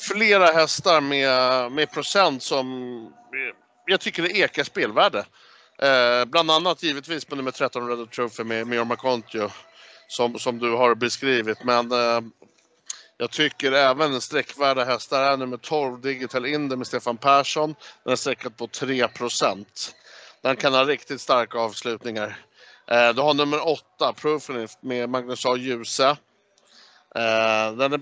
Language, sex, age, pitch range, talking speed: Swedish, male, 60-79, 120-145 Hz, 145 wpm